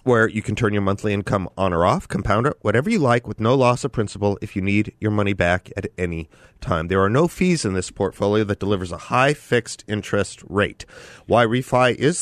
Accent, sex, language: American, male, English